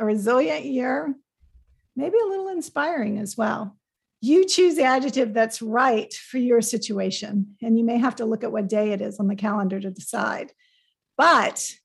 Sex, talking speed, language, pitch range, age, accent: female, 175 wpm, English, 215-275 Hz, 50-69, American